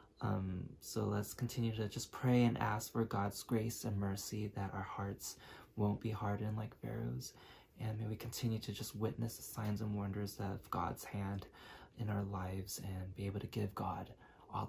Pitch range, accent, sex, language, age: 100-115 Hz, American, male, Chinese, 20-39